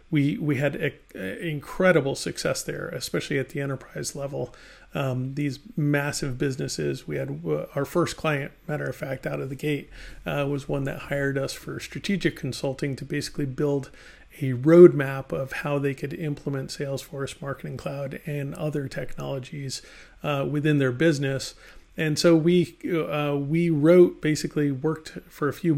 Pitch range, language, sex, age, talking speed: 140-155 Hz, English, male, 40-59, 165 wpm